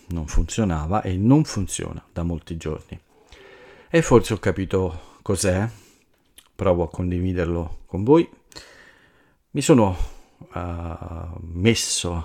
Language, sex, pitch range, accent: Italian, male, 85-110 Hz, native